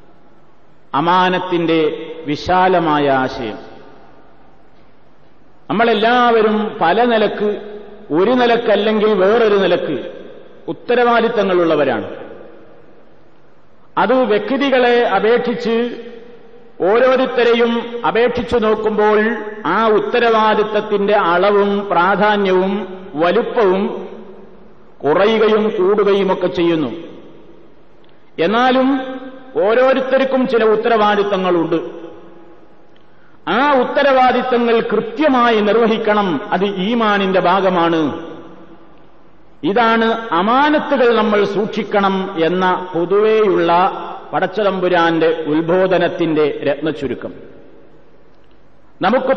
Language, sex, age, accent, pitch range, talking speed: Malayalam, male, 50-69, native, 180-235 Hz, 55 wpm